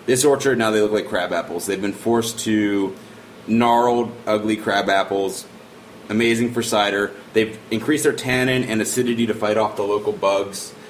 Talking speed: 170 wpm